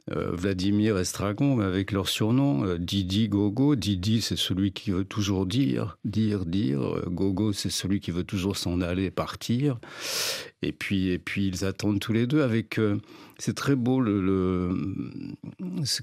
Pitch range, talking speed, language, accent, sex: 90-110 Hz, 170 wpm, French, French, male